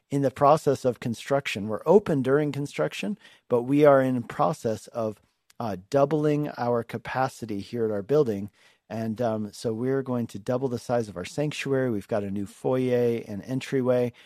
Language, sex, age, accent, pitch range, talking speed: English, male, 40-59, American, 110-140 Hz, 175 wpm